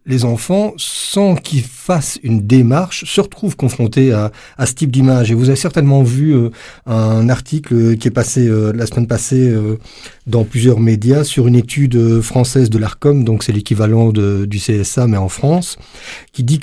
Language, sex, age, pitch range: French, male, 40-59, 115-140 Hz